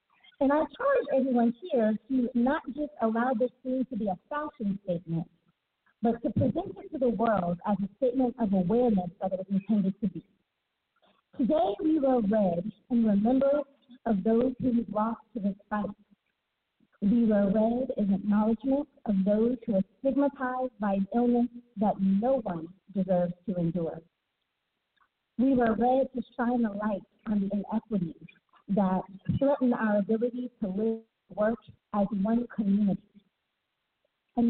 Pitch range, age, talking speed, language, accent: 195-255 Hz, 40-59, 150 wpm, English, American